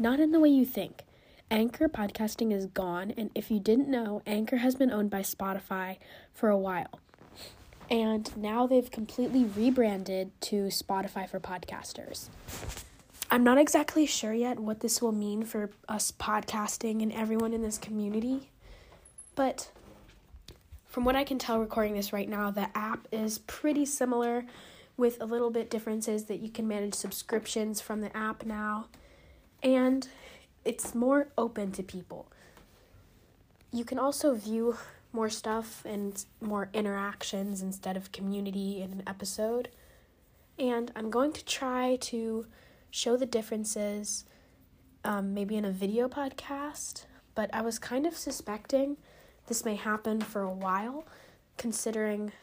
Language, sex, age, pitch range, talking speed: English, female, 10-29, 205-245 Hz, 145 wpm